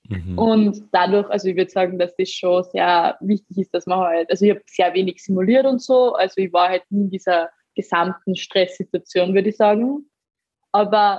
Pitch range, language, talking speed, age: 180-215 Hz, German, 195 wpm, 20-39